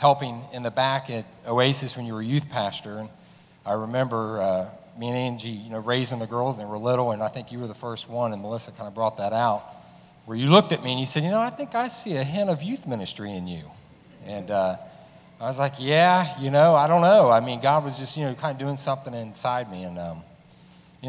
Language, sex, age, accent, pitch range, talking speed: English, male, 40-59, American, 115-145 Hz, 260 wpm